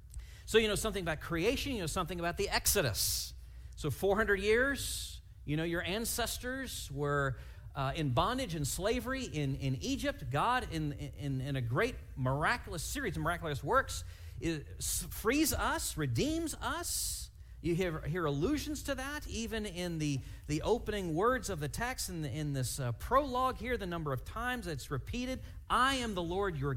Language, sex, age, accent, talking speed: English, male, 40-59, American, 175 wpm